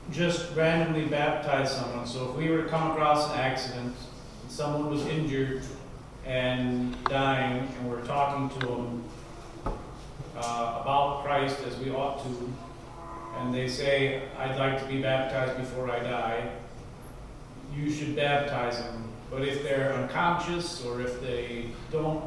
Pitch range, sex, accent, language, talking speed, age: 130-155 Hz, male, American, English, 145 wpm, 40-59